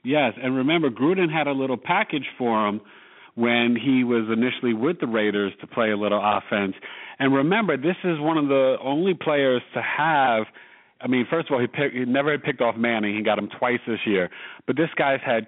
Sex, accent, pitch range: male, American, 105-140 Hz